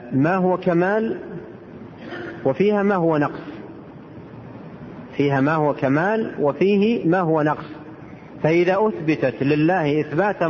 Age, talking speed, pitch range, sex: 40-59, 110 wpm, 140-180 Hz, male